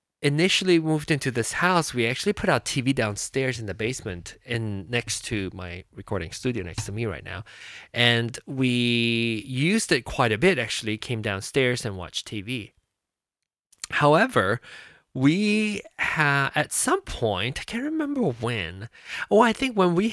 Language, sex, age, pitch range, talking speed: English, male, 20-39, 115-165 Hz, 160 wpm